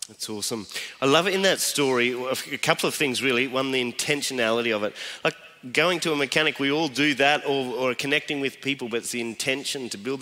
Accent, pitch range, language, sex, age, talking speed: Australian, 125-155 Hz, English, male, 30-49, 225 wpm